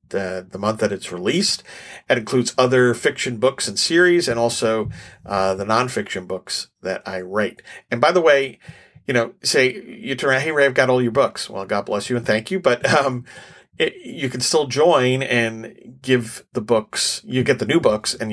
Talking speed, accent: 205 wpm, American